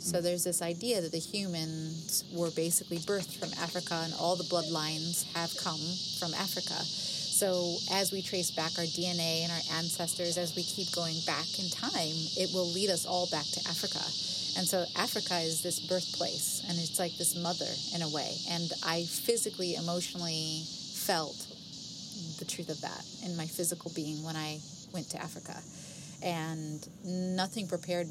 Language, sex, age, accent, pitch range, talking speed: English, female, 30-49, American, 165-185 Hz, 170 wpm